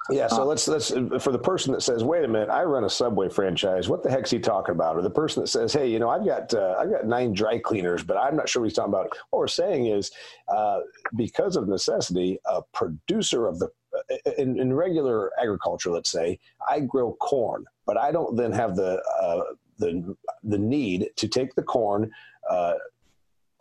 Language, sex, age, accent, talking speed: English, male, 40-59, American, 215 wpm